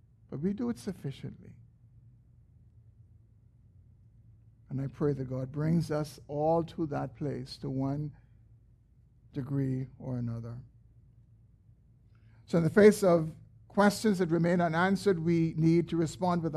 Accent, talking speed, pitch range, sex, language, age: American, 125 wpm, 115-160 Hz, male, English, 60-79